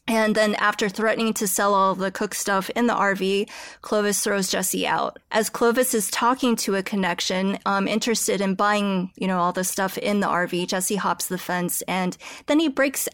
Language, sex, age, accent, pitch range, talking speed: English, female, 20-39, American, 195-230 Hz, 200 wpm